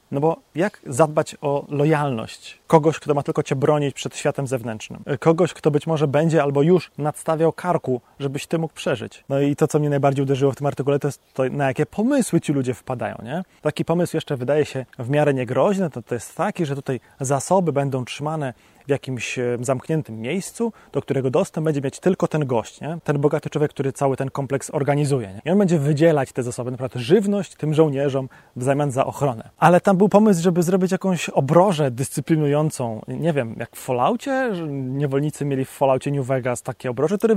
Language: Polish